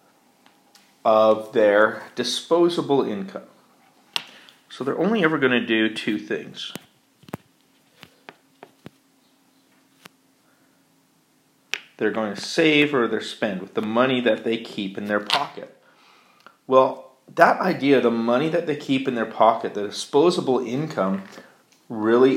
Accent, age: American, 40-59